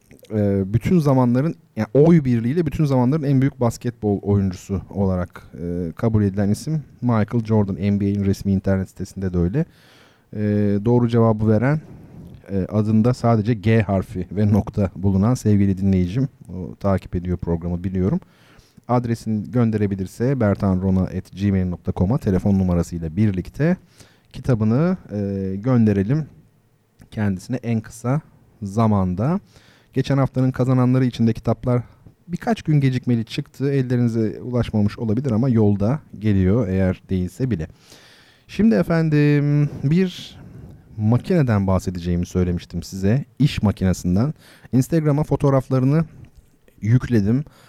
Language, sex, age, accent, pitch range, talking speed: Turkish, male, 40-59, native, 100-135 Hz, 105 wpm